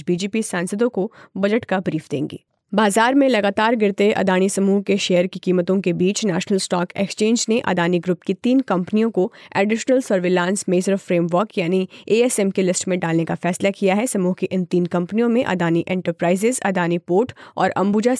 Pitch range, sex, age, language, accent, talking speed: 175-210 Hz, female, 30-49, Hindi, native, 180 wpm